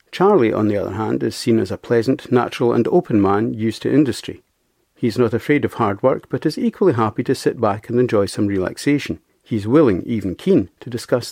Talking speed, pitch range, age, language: 225 wpm, 110-140 Hz, 50-69, English